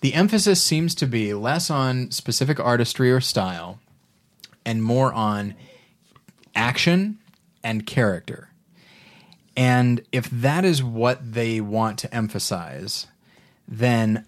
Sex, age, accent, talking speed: male, 30-49, American, 115 wpm